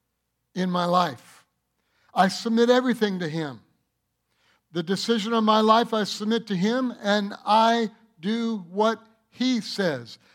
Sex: male